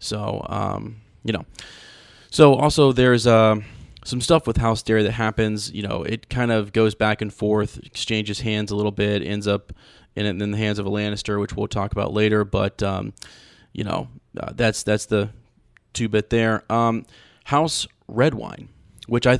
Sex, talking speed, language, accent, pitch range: male, 185 wpm, English, American, 105-115 Hz